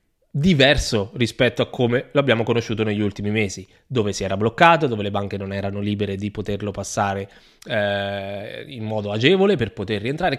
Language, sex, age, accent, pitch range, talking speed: Italian, male, 20-39, native, 105-140 Hz, 170 wpm